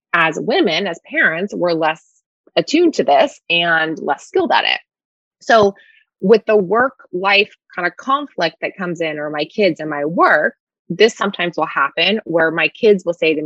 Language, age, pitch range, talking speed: English, 20-39, 170-255 Hz, 180 wpm